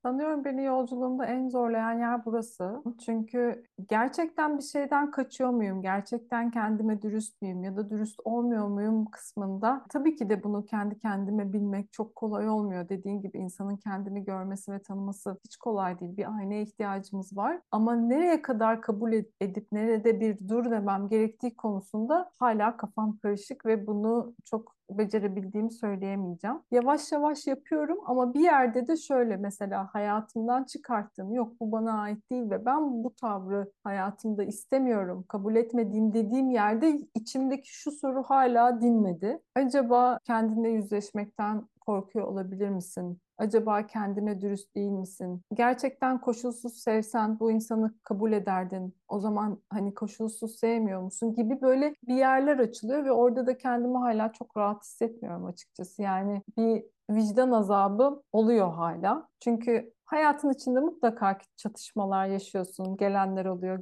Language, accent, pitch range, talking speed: Turkish, native, 200-245 Hz, 140 wpm